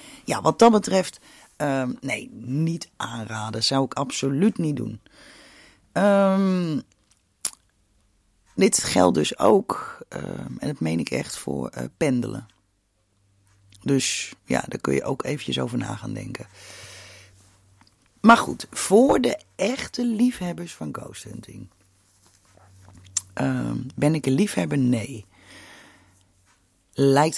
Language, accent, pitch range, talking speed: Dutch, Dutch, 95-140 Hz, 110 wpm